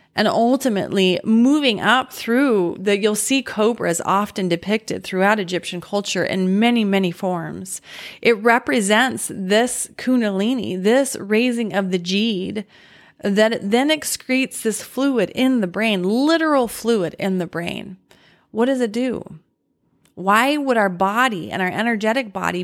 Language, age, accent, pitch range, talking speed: English, 30-49, American, 190-235 Hz, 140 wpm